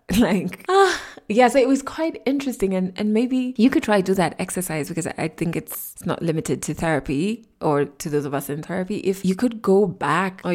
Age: 20-39